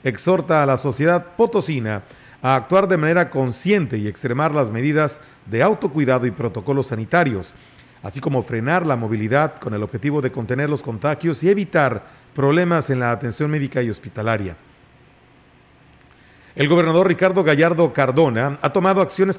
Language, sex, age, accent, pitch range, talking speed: Spanish, male, 40-59, Mexican, 125-170 Hz, 150 wpm